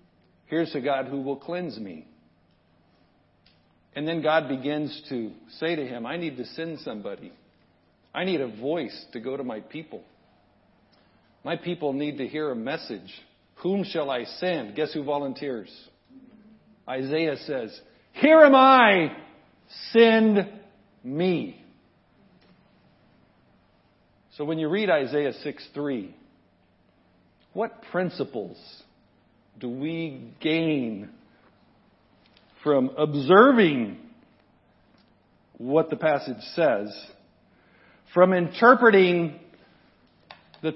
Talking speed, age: 105 wpm, 50-69